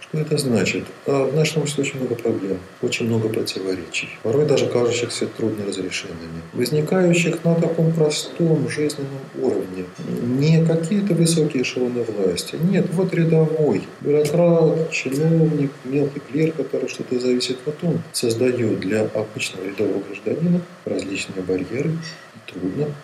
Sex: male